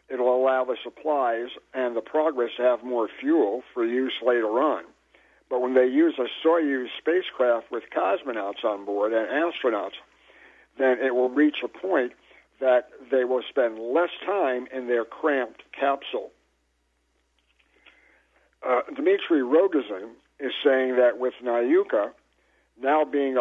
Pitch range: 125-170 Hz